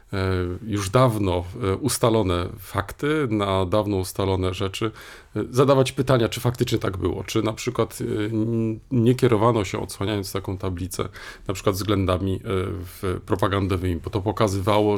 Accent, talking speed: native, 120 wpm